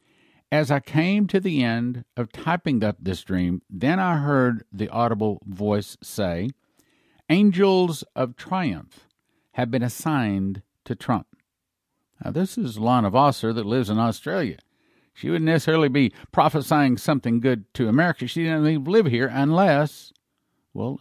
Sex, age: male, 50-69